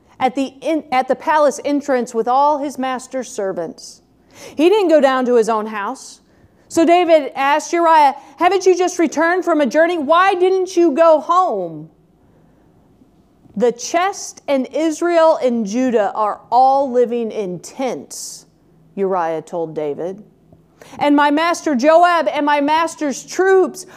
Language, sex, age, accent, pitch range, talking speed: English, female, 40-59, American, 275-340 Hz, 145 wpm